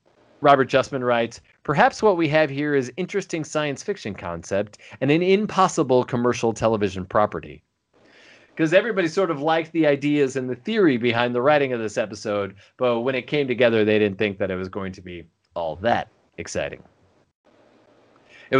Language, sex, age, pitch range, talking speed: English, male, 30-49, 105-145 Hz, 170 wpm